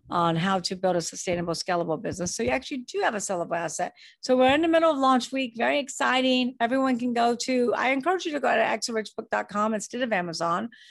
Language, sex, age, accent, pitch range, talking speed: English, female, 50-69, American, 185-240 Hz, 220 wpm